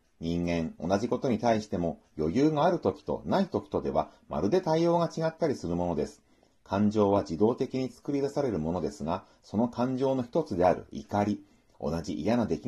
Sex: male